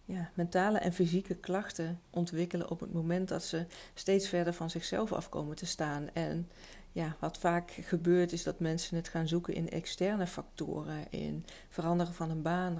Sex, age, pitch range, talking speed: female, 40-59, 165-180 Hz, 175 wpm